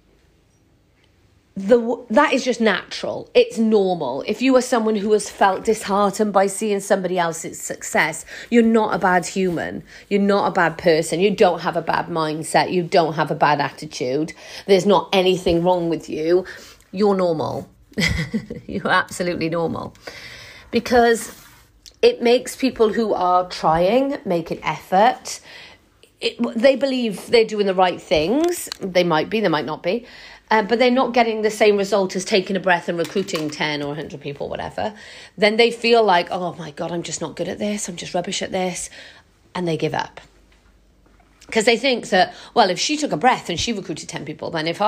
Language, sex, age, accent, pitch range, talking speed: English, female, 40-59, British, 170-220 Hz, 180 wpm